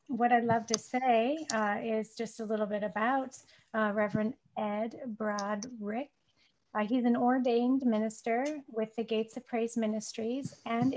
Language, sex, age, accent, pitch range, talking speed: English, female, 30-49, American, 210-240 Hz, 155 wpm